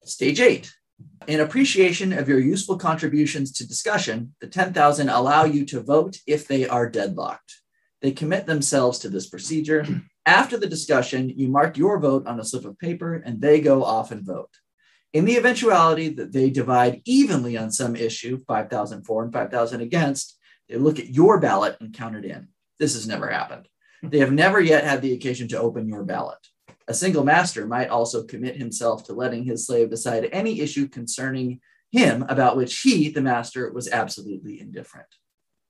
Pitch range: 115-155 Hz